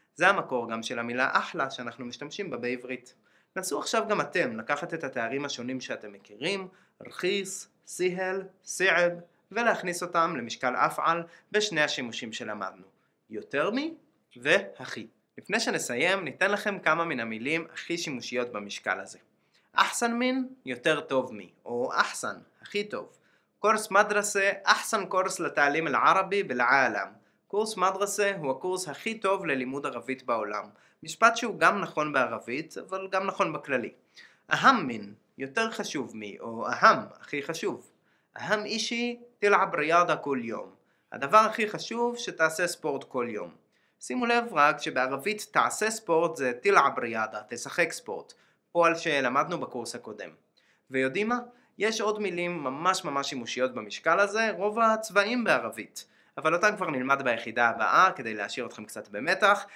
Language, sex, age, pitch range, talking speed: Hebrew, male, 20-39, 135-205 Hz, 140 wpm